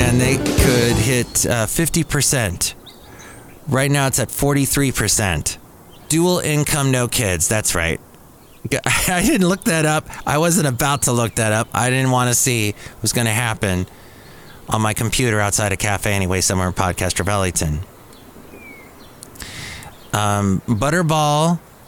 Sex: male